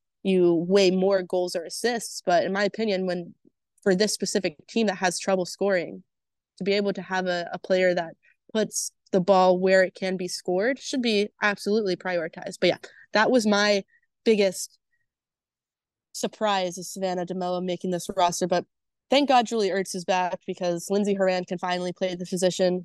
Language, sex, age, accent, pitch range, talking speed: English, female, 20-39, American, 185-205 Hz, 180 wpm